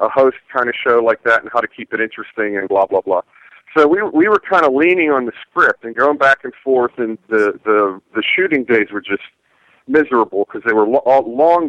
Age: 40-59